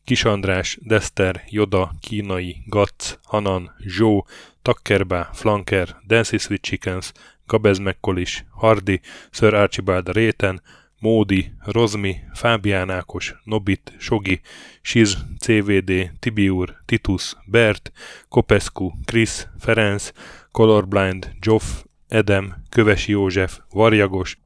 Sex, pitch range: male, 95-110 Hz